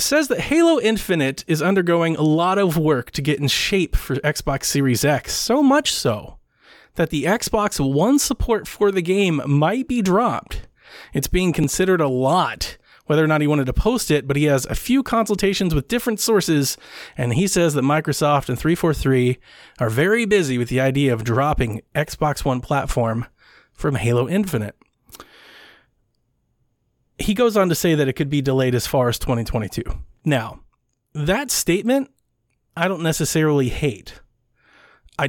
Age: 30-49